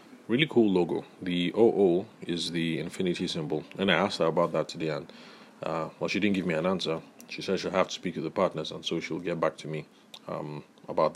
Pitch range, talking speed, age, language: 85-95 Hz, 235 wpm, 30-49, English